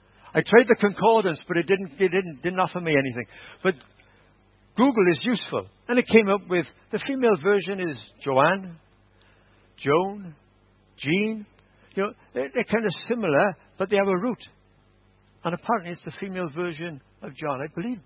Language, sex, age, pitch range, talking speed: English, male, 60-79, 115-190 Hz, 165 wpm